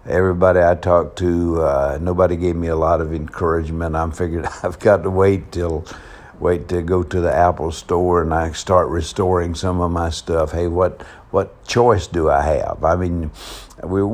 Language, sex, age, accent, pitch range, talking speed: English, male, 60-79, American, 80-100 Hz, 185 wpm